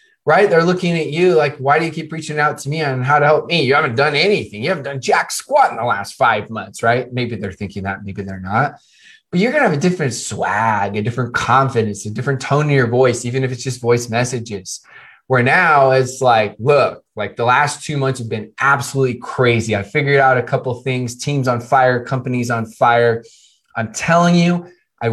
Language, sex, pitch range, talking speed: English, male, 115-150 Hz, 225 wpm